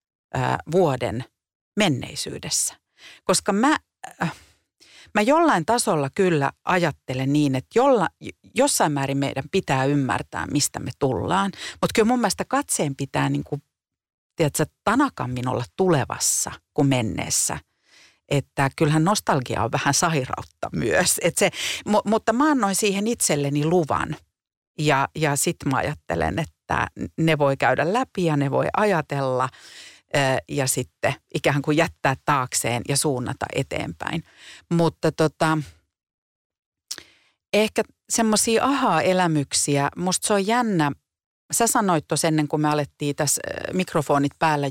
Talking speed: 125 wpm